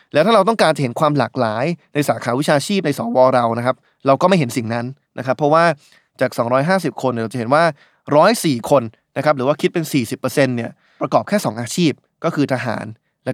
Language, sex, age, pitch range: Thai, male, 20-39, 125-165 Hz